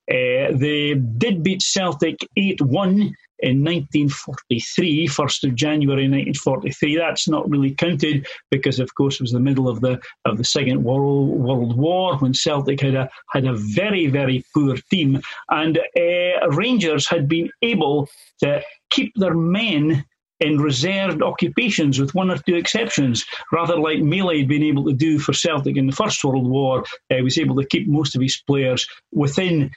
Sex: male